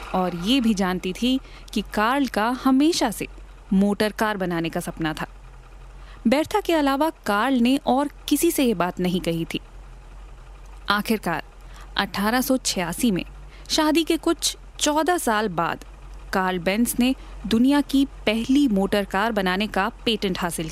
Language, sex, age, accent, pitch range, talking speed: Hindi, female, 20-39, native, 190-285 Hz, 140 wpm